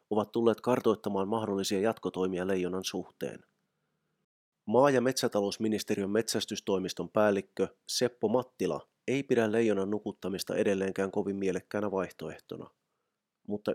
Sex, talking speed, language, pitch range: male, 100 wpm, Finnish, 95-110 Hz